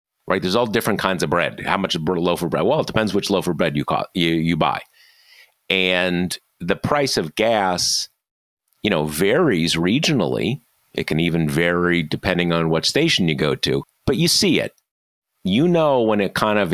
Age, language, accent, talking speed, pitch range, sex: 40-59, English, American, 200 wpm, 85-105 Hz, male